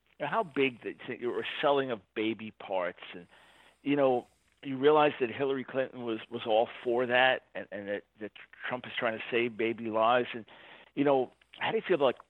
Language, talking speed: English, 200 wpm